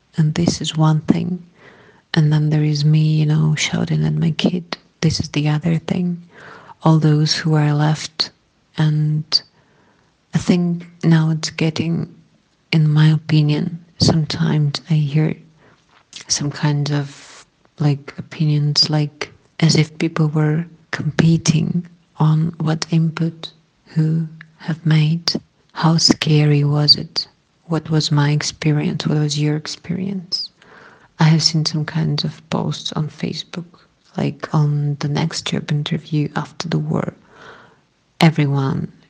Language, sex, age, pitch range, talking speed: English, female, 40-59, 150-165 Hz, 130 wpm